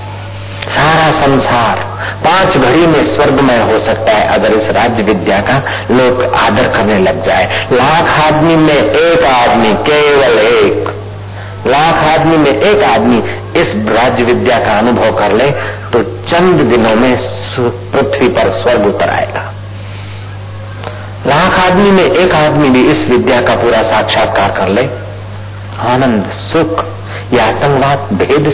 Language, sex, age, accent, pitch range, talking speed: Hindi, male, 50-69, native, 100-125 Hz, 140 wpm